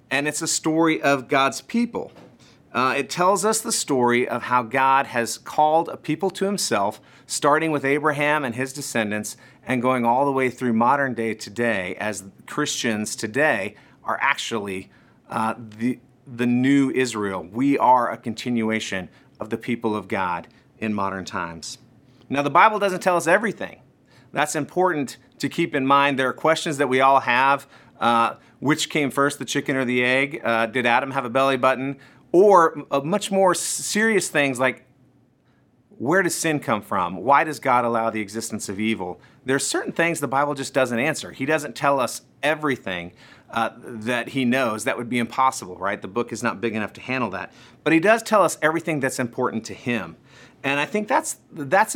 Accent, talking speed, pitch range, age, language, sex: American, 185 wpm, 120-150 Hz, 40-59, English, male